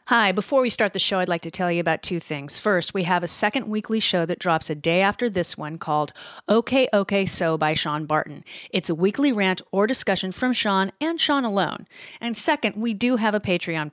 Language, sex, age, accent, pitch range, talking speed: English, female, 30-49, American, 170-235 Hz, 230 wpm